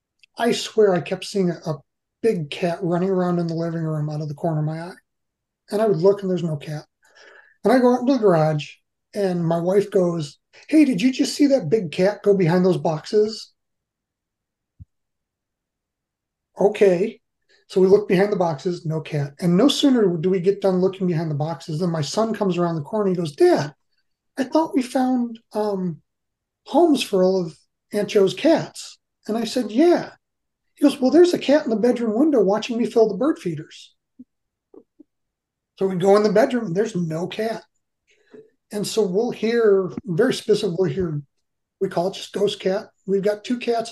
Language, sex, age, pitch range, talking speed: English, male, 30-49, 170-220 Hz, 195 wpm